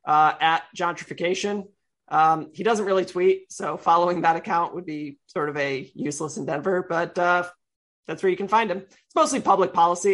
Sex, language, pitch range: male, English, 160-190 Hz